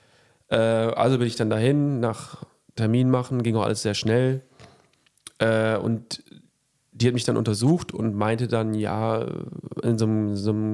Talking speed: 145 wpm